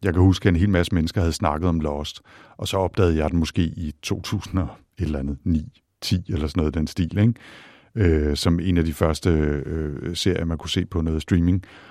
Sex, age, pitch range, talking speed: male, 60-79, 80-95 Hz, 215 wpm